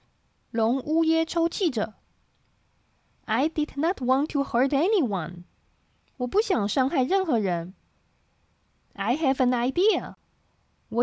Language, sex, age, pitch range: Chinese, female, 20-39, 210-305 Hz